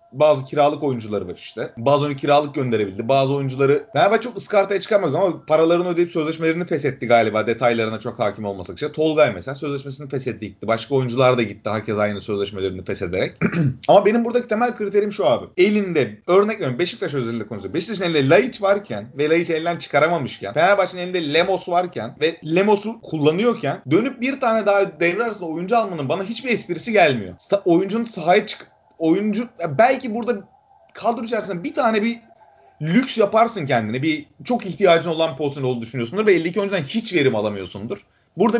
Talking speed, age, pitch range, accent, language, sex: 165 wpm, 30-49, 140-220 Hz, native, Turkish, male